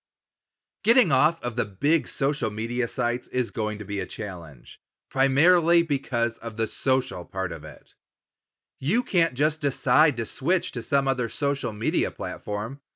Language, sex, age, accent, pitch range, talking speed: English, male, 30-49, American, 115-150 Hz, 155 wpm